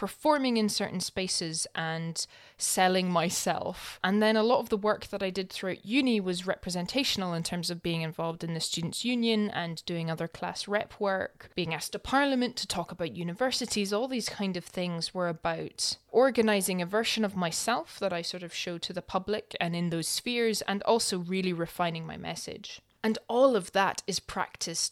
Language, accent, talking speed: English, British, 195 wpm